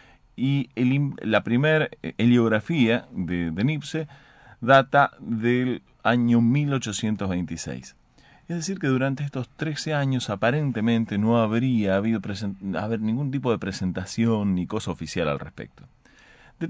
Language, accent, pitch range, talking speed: Spanish, Argentinian, 95-135 Hz, 115 wpm